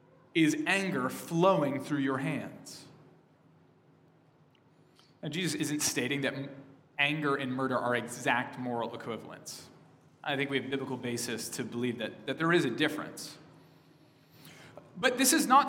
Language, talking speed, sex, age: English, 140 wpm, male, 30-49